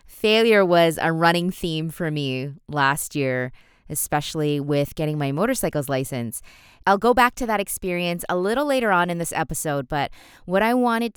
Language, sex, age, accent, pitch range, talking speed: English, female, 20-39, American, 150-195 Hz, 170 wpm